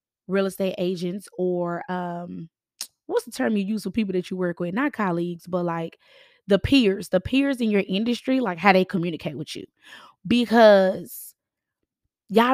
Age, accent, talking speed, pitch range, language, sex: 20-39, American, 165 wpm, 190-255 Hz, English, female